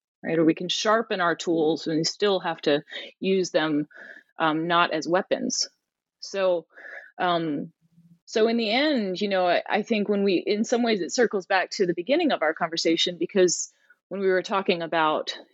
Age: 30-49